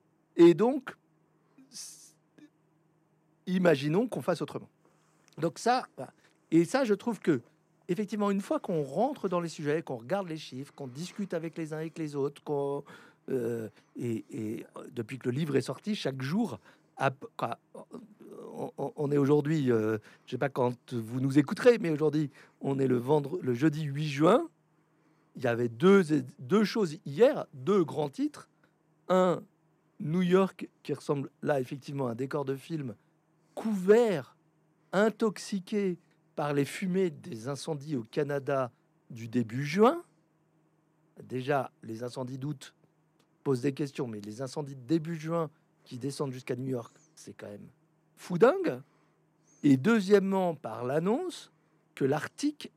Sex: male